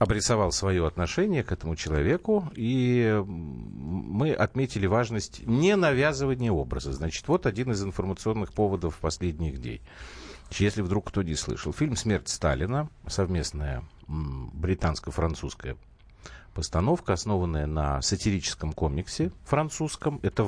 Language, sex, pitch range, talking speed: Russian, male, 80-115 Hz, 115 wpm